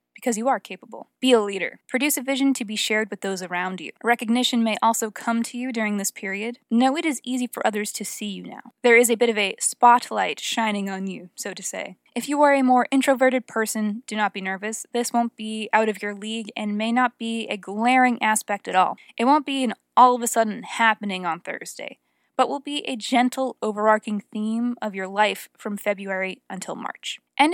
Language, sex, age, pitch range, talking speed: English, female, 20-39, 205-250 Hz, 220 wpm